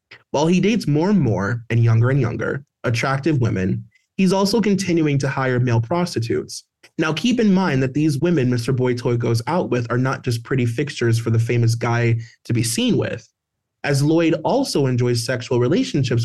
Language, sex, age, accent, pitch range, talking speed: English, male, 20-39, American, 120-160 Hz, 190 wpm